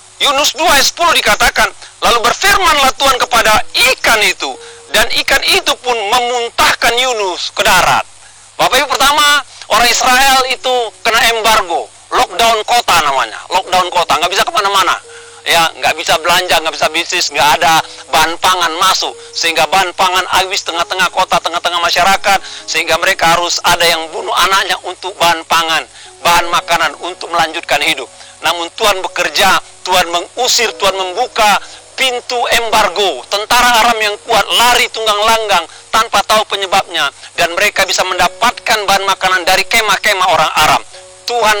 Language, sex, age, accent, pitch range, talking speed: Indonesian, male, 50-69, native, 190-255 Hz, 145 wpm